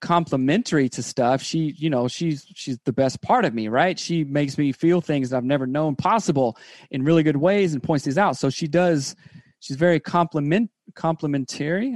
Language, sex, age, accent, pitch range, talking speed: English, male, 30-49, American, 135-170 Hz, 195 wpm